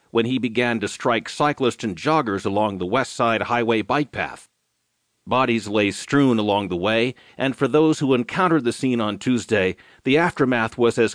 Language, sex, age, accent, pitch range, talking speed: English, male, 40-59, American, 115-140 Hz, 185 wpm